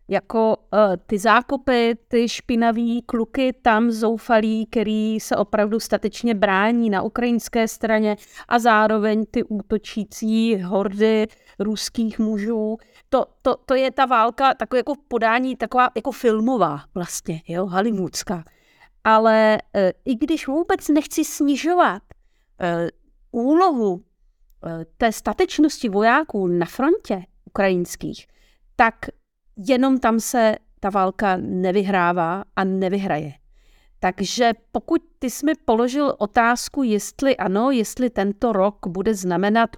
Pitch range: 195-245 Hz